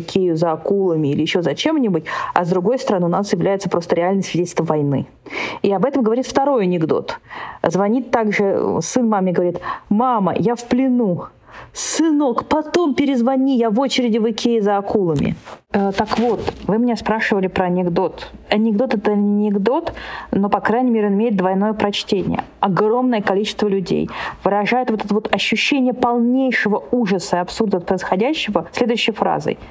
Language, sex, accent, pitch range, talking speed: Russian, female, native, 185-235 Hz, 160 wpm